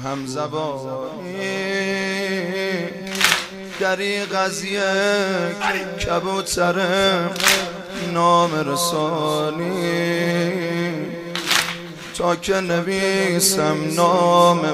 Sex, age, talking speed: male, 30-49, 50 wpm